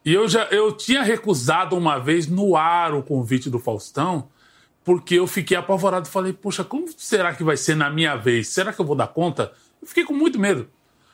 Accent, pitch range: Brazilian, 125-180 Hz